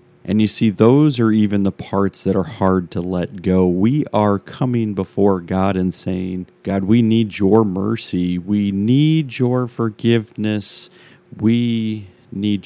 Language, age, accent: English, 40-59, American